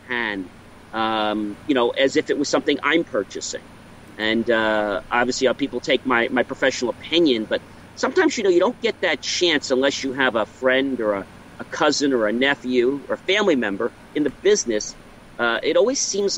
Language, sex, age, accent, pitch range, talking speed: English, male, 40-59, American, 115-160 Hz, 190 wpm